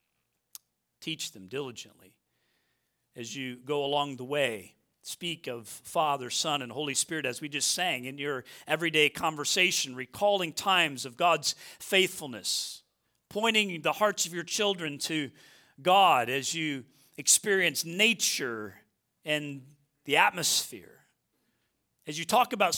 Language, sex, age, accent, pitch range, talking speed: English, male, 40-59, American, 135-200 Hz, 125 wpm